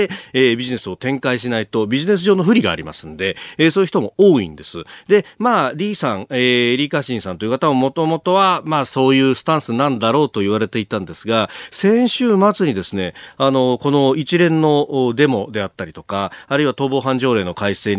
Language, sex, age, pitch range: Japanese, male, 40-59, 110-160 Hz